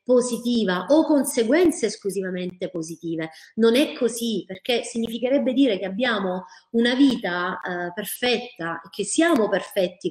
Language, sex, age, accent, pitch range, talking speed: Italian, female, 30-49, native, 190-255 Hz, 125 wpm